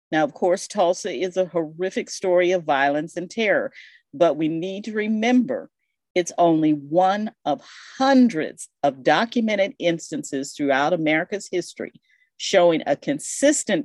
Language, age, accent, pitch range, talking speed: English, 50-69, American, 155-225 Hz, 135 wpm